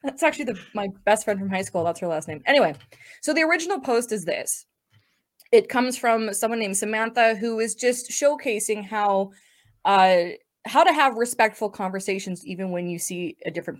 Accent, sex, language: American, female, English